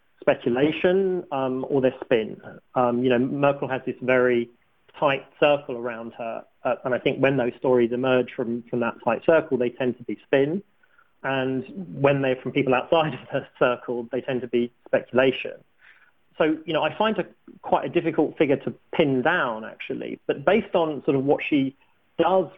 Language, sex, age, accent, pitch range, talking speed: English, male, 40-59, British, 120-150 Hz, 185 wpm